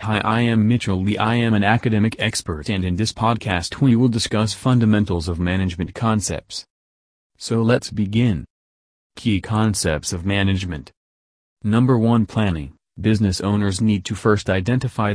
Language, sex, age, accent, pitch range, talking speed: English, male, 30-49, American, 90-110 Hz, 145 wpm